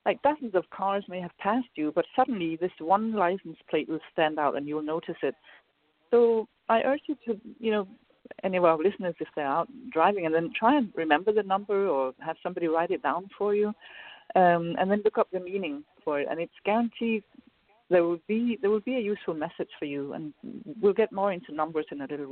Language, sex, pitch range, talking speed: English, female, 165-215 Hz, 225 wpm